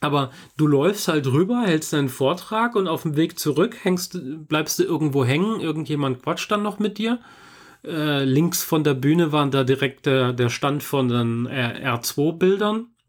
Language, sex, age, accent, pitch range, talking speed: German, male, 30-49, German, 125-165 Hz, 175 wpm